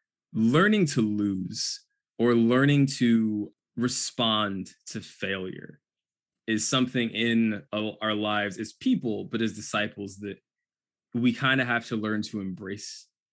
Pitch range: 100-115 Hz